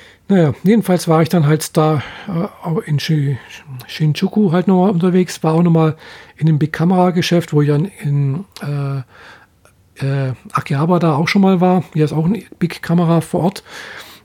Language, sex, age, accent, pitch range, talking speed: German, male, 50-69, German, 150-180 Hz, 155 wpm